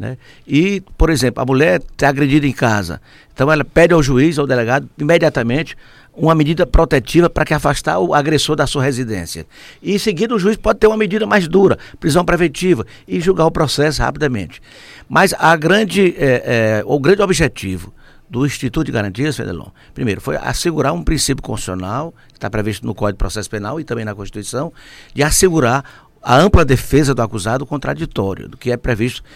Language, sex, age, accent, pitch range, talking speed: Portuguese, male, 60-79, Brazilian, 125-180 Hz, 185 wpm